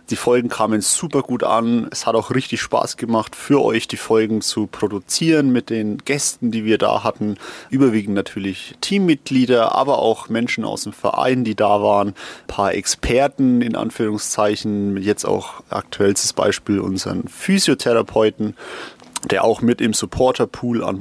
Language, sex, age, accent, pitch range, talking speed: German, male, 30-49, German, 110-135 Hz, 155 wpm